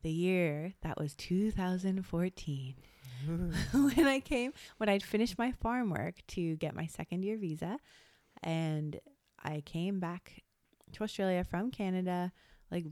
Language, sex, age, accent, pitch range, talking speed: English, female, 20-39, American, 155-185 Hz, 135 wpm